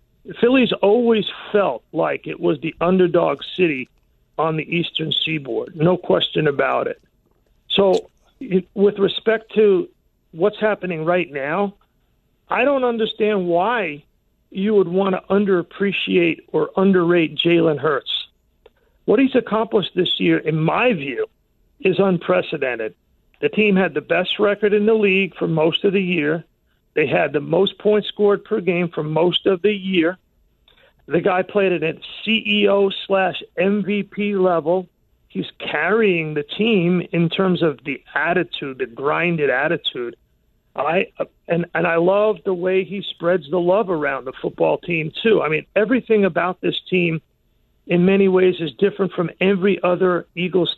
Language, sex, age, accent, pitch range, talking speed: English, male, 50-69, American, 165-205 Hz, 150 wpm